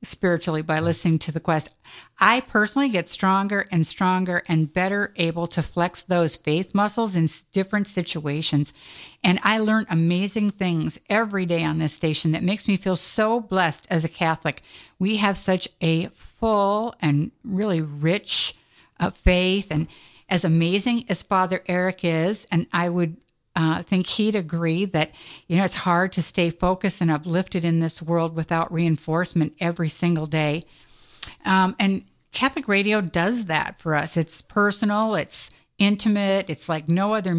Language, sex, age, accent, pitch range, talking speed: English, female, 50-69, American, 165-195 Hz, 160 wpm